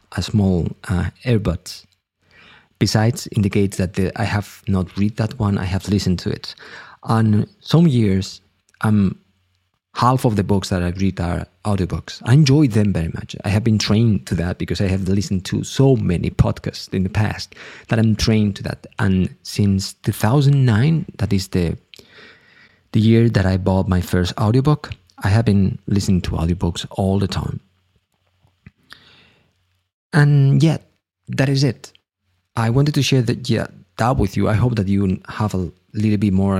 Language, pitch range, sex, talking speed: English, 95-115 Hz, male, 170 wpm